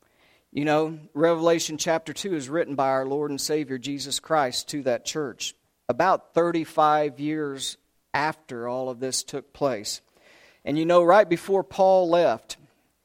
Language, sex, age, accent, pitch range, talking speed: English, male, 40-59, American, 130-165 Hz, 150 wpm